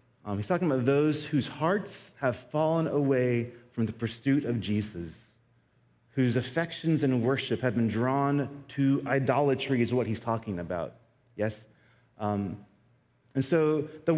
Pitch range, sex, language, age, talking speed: 120-165 Hz, male, English, 30-49, 140 wpm